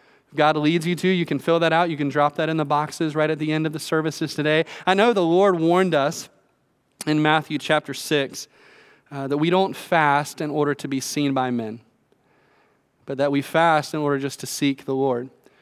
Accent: American